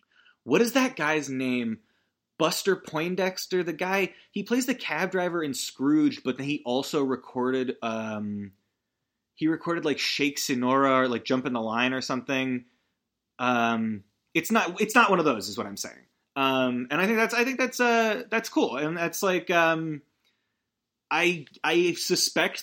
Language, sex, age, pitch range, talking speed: English, male, 20-39, 125-175 Hz, 170 wpm